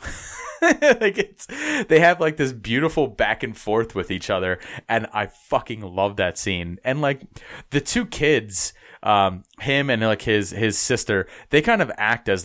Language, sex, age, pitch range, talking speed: English, male, 30-49, 95-130 Hz, 175 wpm